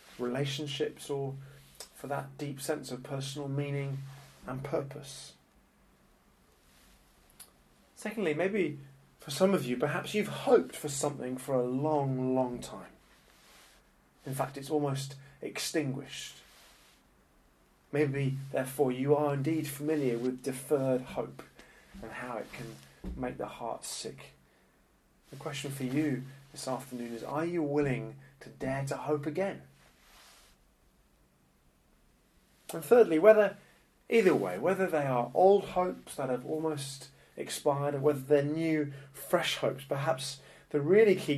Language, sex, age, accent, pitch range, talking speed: English, male, 30-49, British, 130-160 Hz, 130 wpm